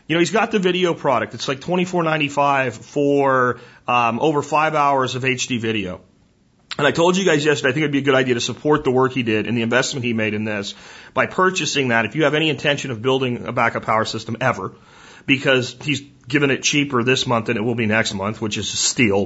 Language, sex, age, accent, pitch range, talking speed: English, male, 30-49, American, 115-145 Hz, 255 wpm